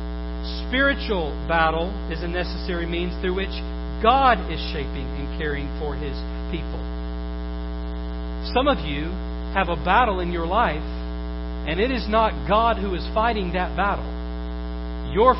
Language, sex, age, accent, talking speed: English, male, 50-69, American, 140 wpm